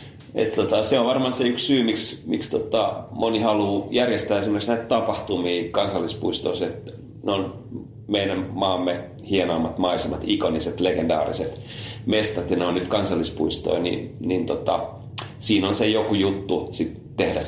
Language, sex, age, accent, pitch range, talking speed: Finnish, male, 30-49, native, 90-115 Hz, 150 wpm